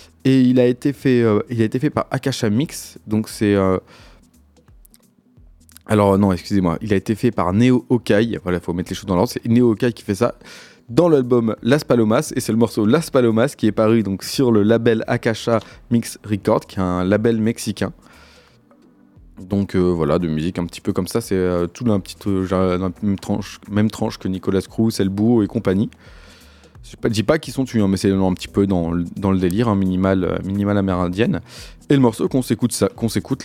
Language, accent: French, French